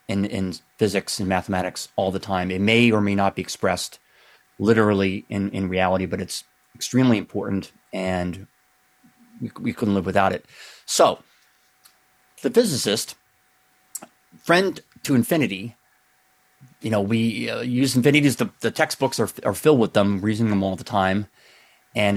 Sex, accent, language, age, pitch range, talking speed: male, American, English, 30-49, 95-115 Hz, 155 wpm